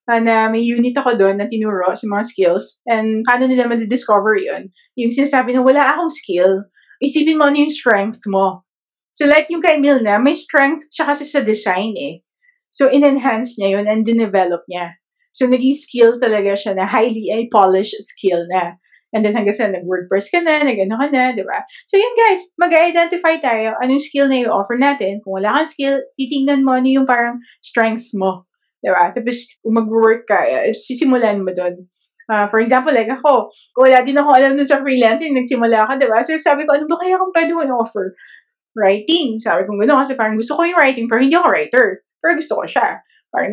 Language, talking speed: English, 195 wpm